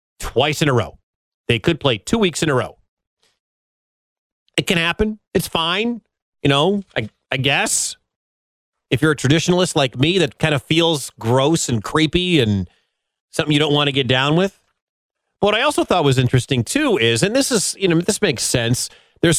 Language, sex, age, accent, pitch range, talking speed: English, male, 40-59, American, 115-165 Hz, 190 wpm